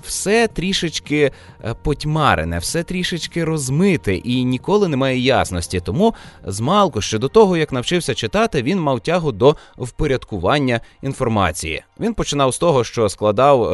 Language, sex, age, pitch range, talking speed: Russian, male, 20-39, 95-140 Hz, 135 wpm